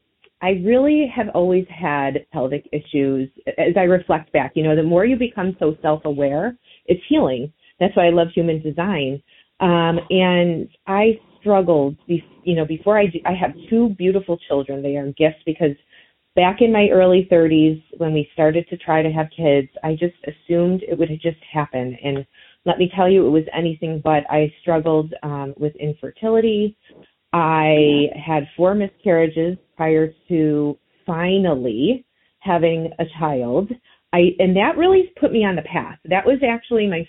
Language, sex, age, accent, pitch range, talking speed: English, female, 30-49, American, 155-190 Hz, 170 wpm